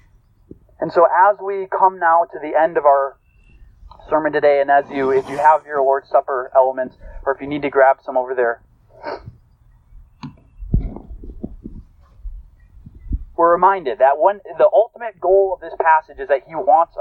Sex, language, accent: male, English, American